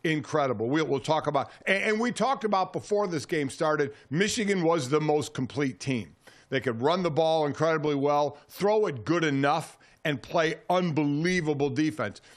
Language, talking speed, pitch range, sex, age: English, 160 wpm, 135-165 Hz, male, 50-69